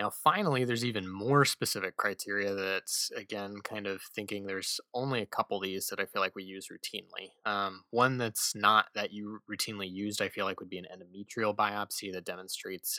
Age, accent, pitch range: 20-39, American, 100-115 Hz